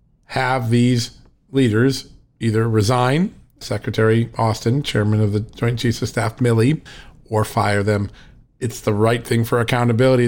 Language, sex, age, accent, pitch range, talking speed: English, male, 50-69, American, 115-140 Hz, 140 wpm